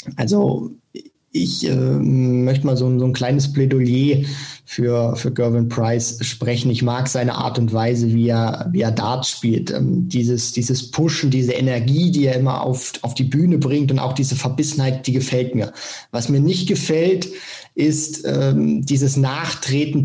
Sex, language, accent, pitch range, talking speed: male, German, German, 125-140 Hz, 170 wpm